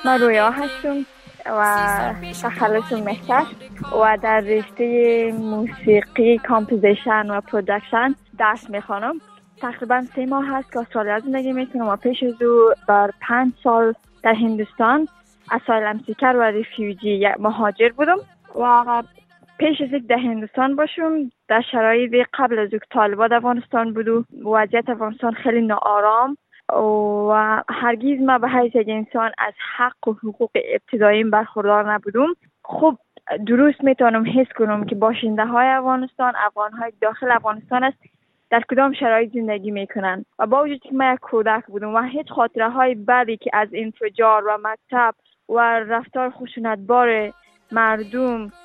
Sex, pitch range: female, 215-255 Hz